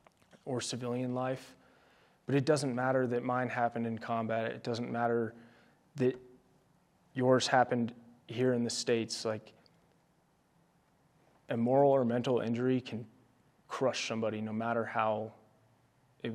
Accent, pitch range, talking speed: American, 115-125 Hz, 130 wpm